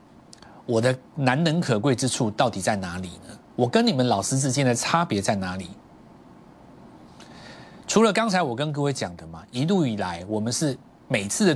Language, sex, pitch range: Chinese, male, 100-145 Hz